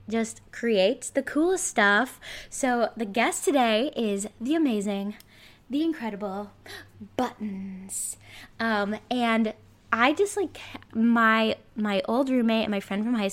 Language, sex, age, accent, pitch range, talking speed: English, female, 10-29, American, 205-265 Hz, 130 wpm